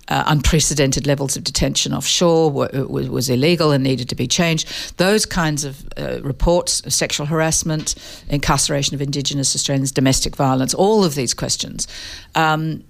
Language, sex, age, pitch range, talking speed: English, female, 50-69, 140-165 Hz, 145 wpm